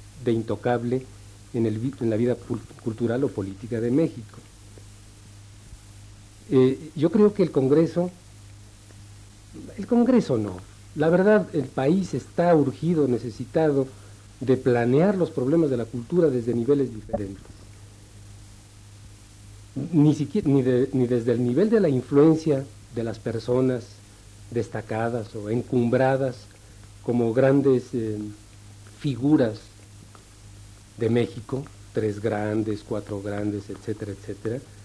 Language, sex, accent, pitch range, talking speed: Spanish, male, Mexican, 105-135 Hz, 115 wpm